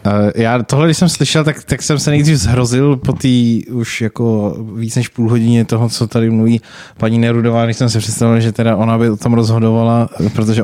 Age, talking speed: 20-39, 210 wpm